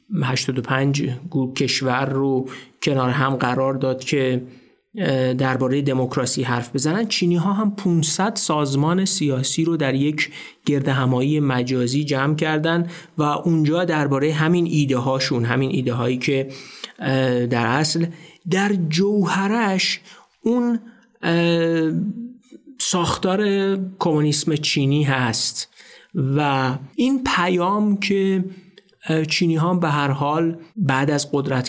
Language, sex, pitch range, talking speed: Persian, male, 130-175 Hz, 110 wpm